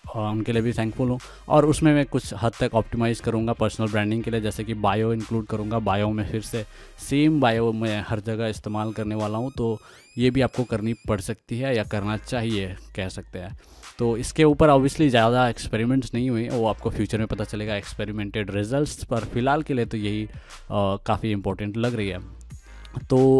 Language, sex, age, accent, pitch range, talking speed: Hindi, male, 20-39, native, 105-125 Hz, 200 wpm